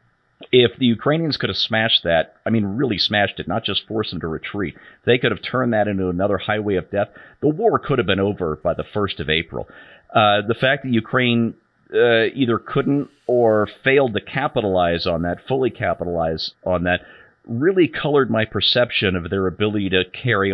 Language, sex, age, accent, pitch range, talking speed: English, male, 40-59, American, 95-120 Hz, 195 wpm